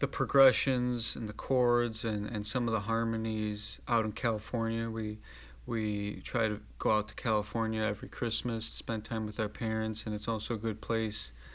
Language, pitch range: English, 110-125 Hz